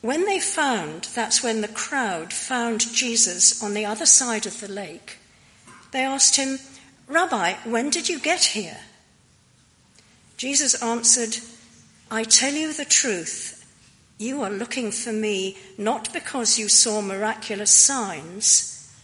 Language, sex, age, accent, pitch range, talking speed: English, female, 50-69, British, 205-250 Hz, 135 wpm